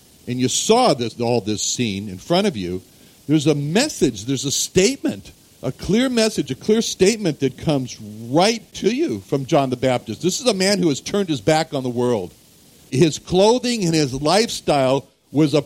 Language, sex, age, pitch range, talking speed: English, male, 60-79, 120-165 Hz, 195 wpm